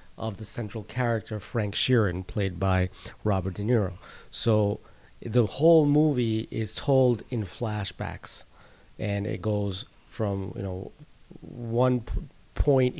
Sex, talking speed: male, 125 wpm